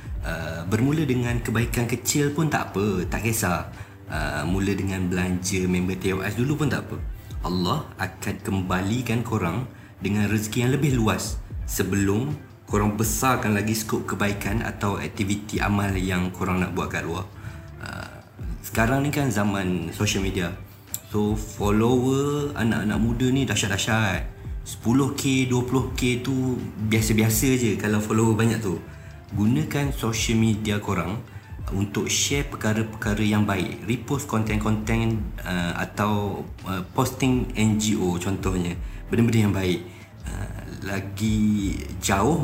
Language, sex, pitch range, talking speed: Malay, male, 95-115 Hz, 120 wpm